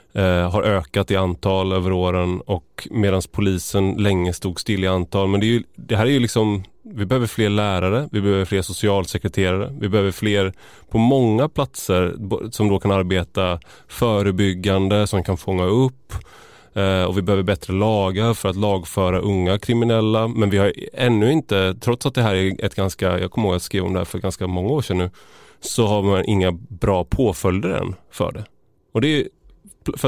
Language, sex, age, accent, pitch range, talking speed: Swedish, male, 20-39, native, 95-115 Hz, 190 wpm